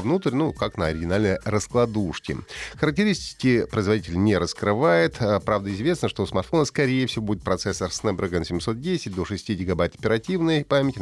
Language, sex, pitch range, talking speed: Russian, male, 95-140 Hz, 140 wpm